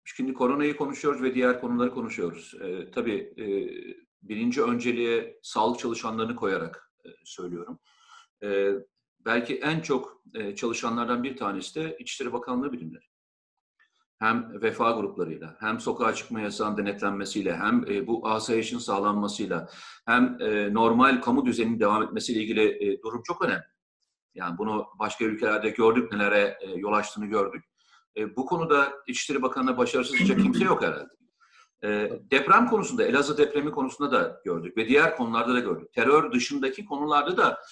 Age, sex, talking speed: 40-59, male, 145 wpm